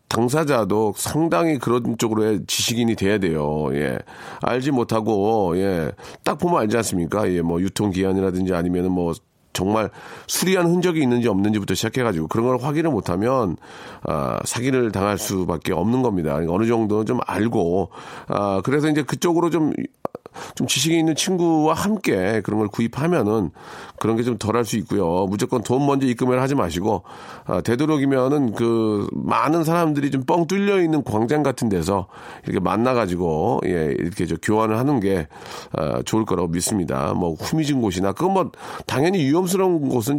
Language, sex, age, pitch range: Korean, male, 40-59, 95-135 Hz